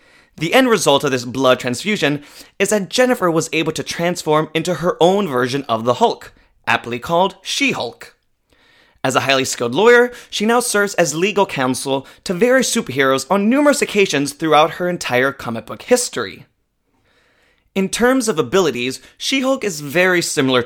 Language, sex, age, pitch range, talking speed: English, male, 20-39, 135-195 Hz, 160 wpm